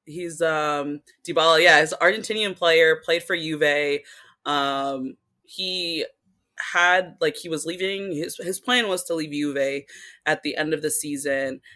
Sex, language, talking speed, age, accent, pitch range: female, English, 160 wpm, 20-39, American, 140-170 Hz